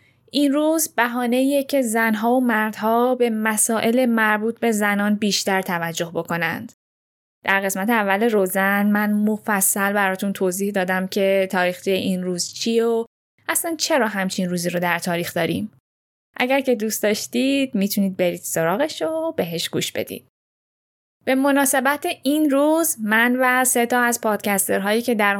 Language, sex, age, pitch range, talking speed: Persian, female, 10-29, 190-240 Hz, 145 wpm